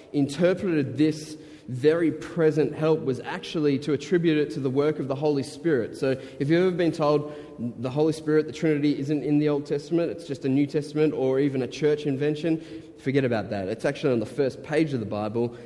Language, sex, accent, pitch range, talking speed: English, male, Australian, 120-155 Hz, 210 wpm